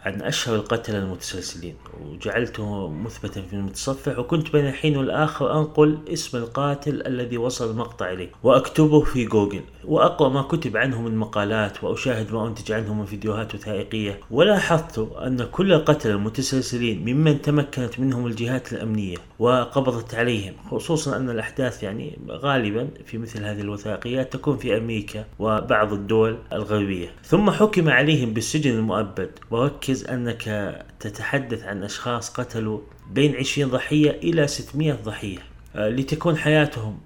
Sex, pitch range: male, 110-140 Hz